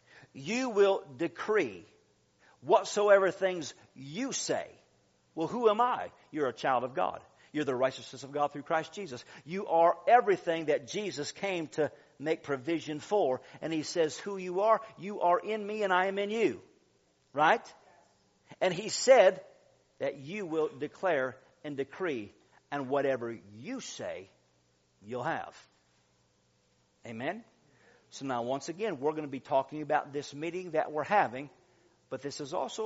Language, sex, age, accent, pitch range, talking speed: English, male, 50-69, American, 130-175 Hz, 155 wpm